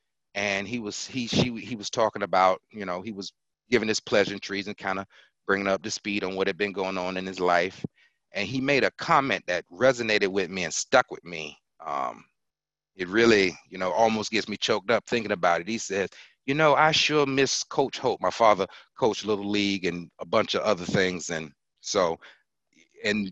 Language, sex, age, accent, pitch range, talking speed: English, male, 30-49, American, 95-120 Hz, 210 wpm